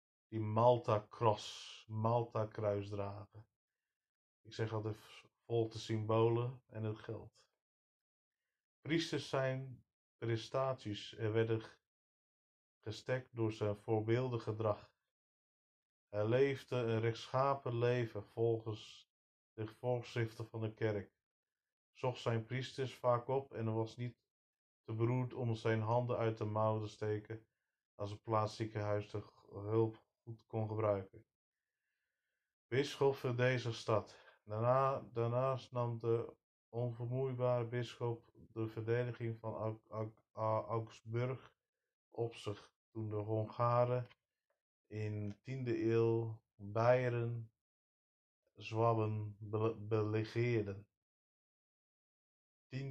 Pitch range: 110-120 Hz